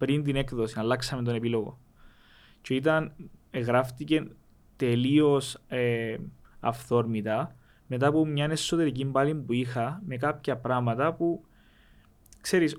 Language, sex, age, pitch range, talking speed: Greek, male, 20-39, 120-155 Hz, 105 wpm